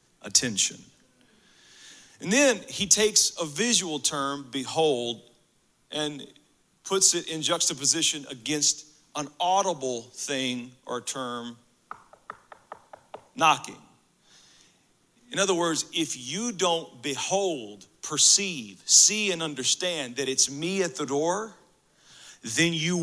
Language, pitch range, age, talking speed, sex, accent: English, 120-165 Hz, 40-59, 105 wpm, male, American